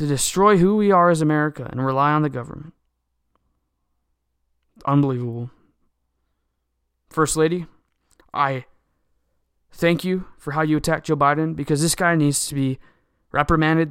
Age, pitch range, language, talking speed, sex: 20-39, 125-150 Hz, English, 135 wpm, male